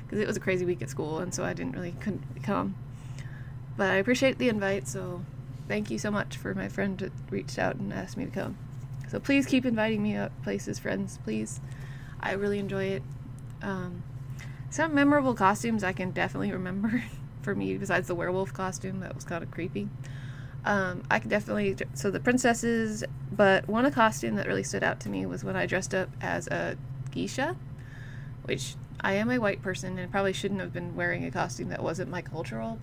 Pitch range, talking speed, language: 130-195 Hz, 205 wpm, English